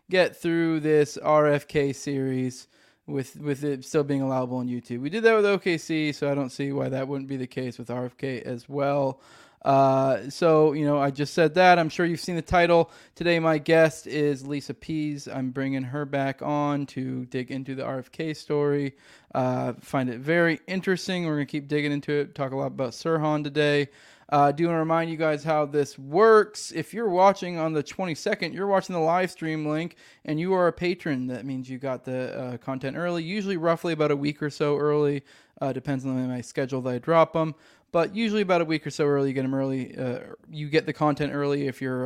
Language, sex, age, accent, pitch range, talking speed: English, male, 20-39, American, 135-165 Hz, 220 wpm